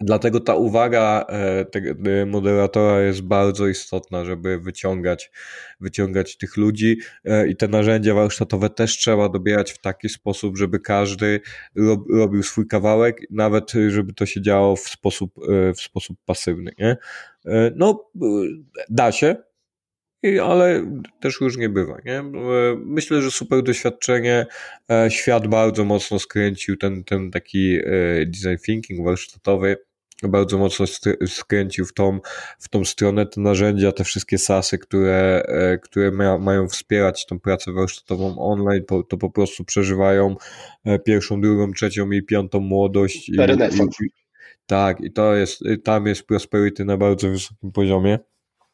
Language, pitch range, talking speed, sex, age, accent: Polish, 95-110 Hz, 135 wpm, male, 20-39, native